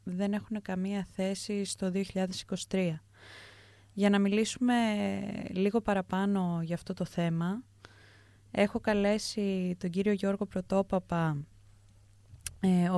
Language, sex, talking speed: Greek, female, 100 wpm